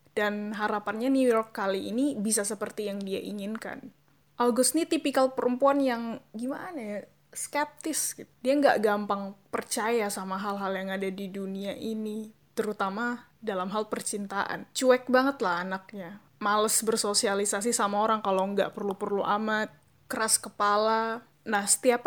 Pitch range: 205-255 Hz